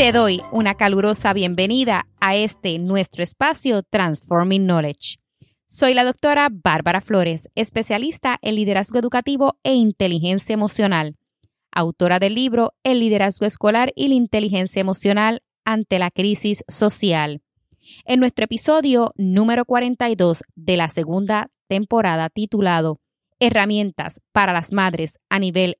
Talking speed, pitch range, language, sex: 125 wpm, 180-230 Hz, English, female